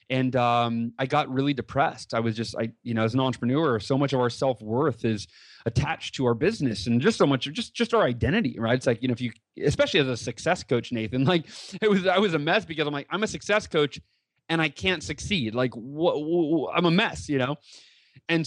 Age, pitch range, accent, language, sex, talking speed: 30-49, 125-170 Hz, American, English, male, 240 wpm